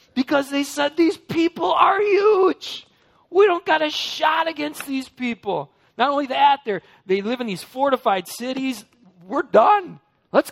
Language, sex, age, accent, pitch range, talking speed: English, male, 40-59, American, 165-255 Hz, 155 wpm